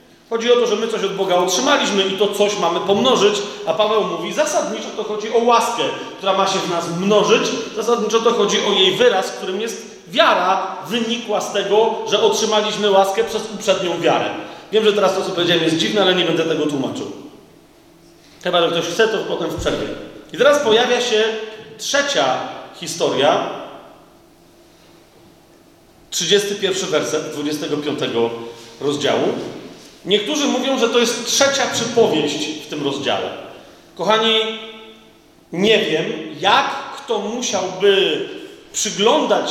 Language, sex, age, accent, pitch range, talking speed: Polish, male, 40-59, native, 180-235 Hz, 145 wpm